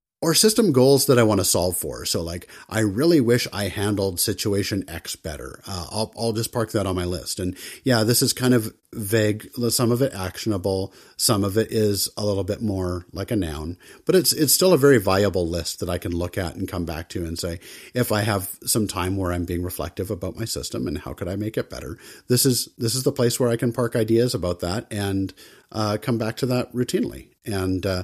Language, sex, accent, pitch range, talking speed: English, male, American, 90-115 Hz, 235 wpm